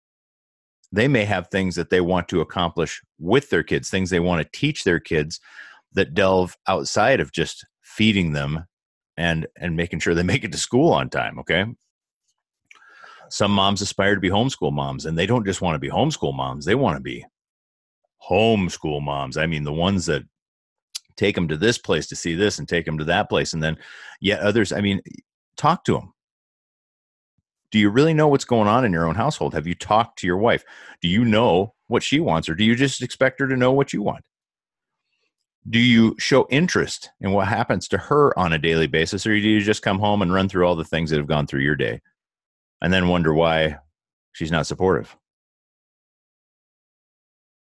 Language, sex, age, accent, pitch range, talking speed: English, male, 30-49, American, 80-105 Hz, 200 wpm